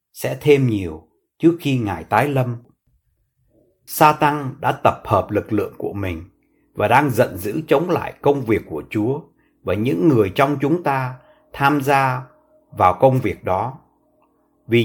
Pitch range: 120-150 Hz